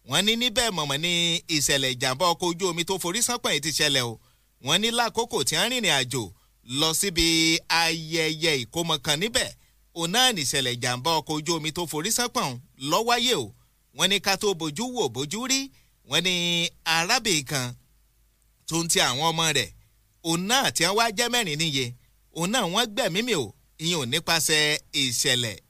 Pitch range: 140-210 Hz